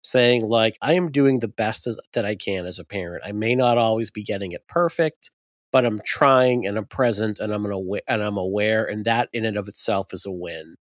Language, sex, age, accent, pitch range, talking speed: English, male, 40-59, American, 105-135 Hz, 220 wpm